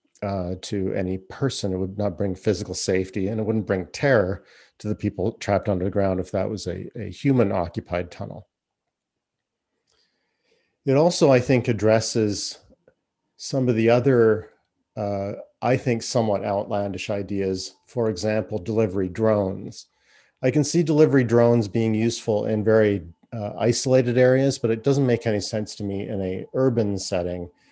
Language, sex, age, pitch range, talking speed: English, male, 40-59, 100-120 Hz, 155 wpm